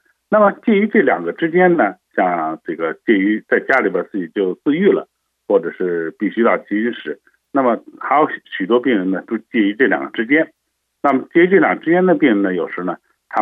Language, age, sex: Chinese, 60-79, male